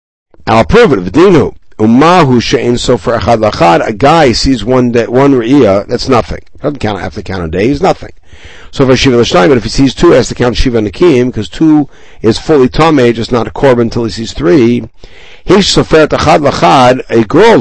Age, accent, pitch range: 60-79, American, 115-145 Hz